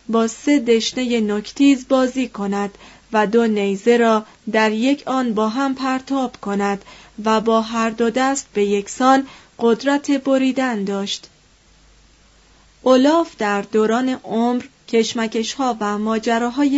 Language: Persian